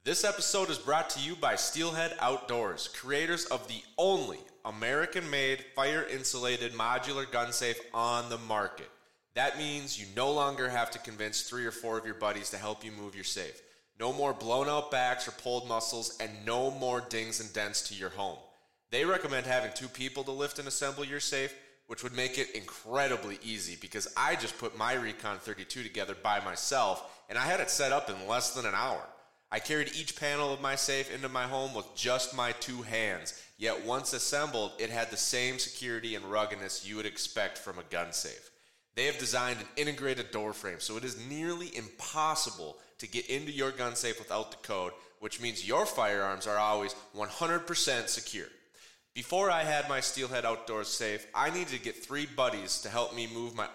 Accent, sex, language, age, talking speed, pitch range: American, male, English, 30-49, 195 wpm, 110-140 Hz